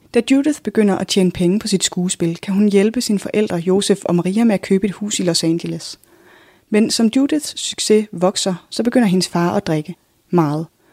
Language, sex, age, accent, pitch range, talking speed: Danish, female, 30-49, native, 180-220 Hz, 205 wpm